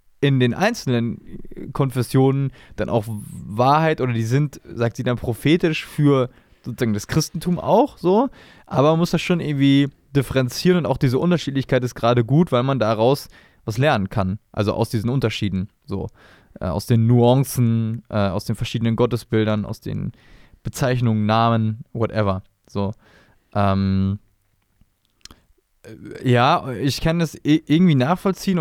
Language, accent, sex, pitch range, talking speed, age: German, German, male, 110-140 Hz, 140 wpm, 20-39